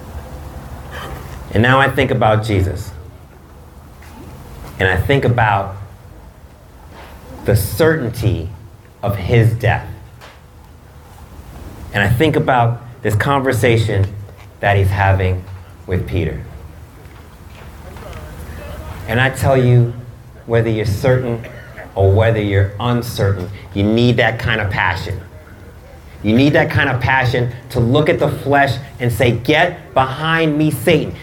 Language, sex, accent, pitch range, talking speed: English, male, American, 95-145 Hz, 115 wpm